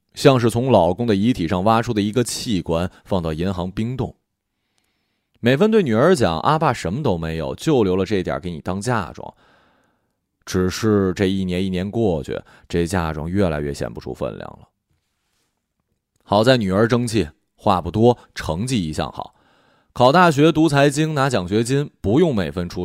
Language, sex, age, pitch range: Chinese, male, 20-39, 95-125 Hz